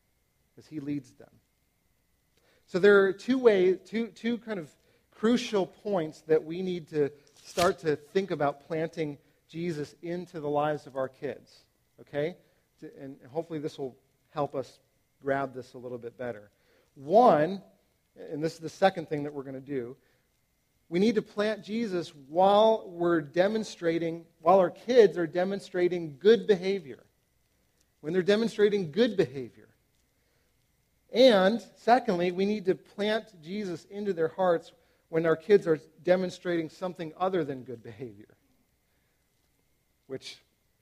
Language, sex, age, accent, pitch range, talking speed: English, male, 40-59, American, 140-190 Hz, 145 wpm